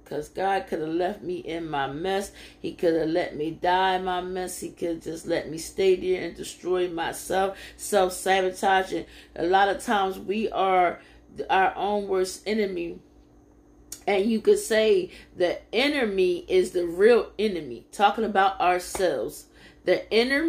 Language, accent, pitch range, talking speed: English, American, 180-225 Hz, 165 wpm